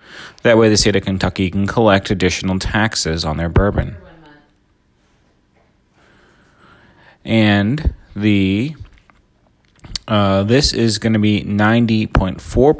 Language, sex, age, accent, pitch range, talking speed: English, male, 30-49, American, 95-115 Hz, 105 wpm